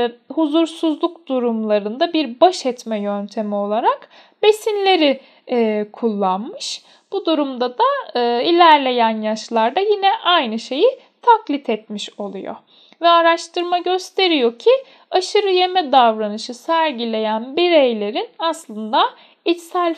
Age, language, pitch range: 10-29, Turkish, 230-325 Hz